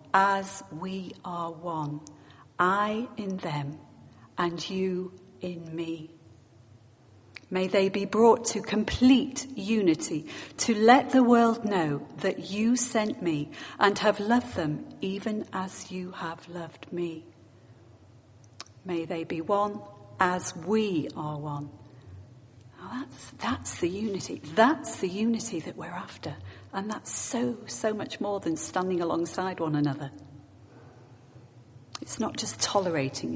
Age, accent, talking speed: 40-59, British, 125 wpm